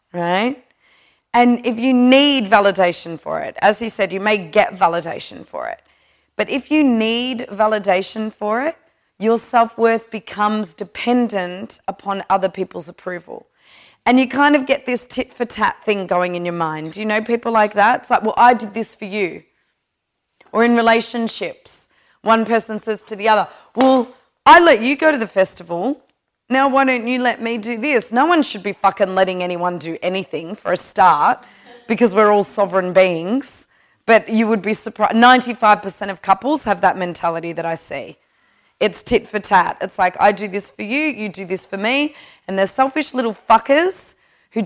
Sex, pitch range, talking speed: female, 195-245 Hz, 185 wpm